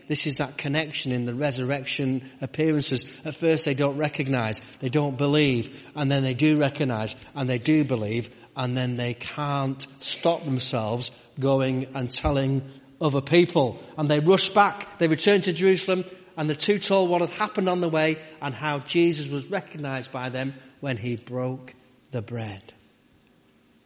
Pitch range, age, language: 125-155 Hz, 30-49, English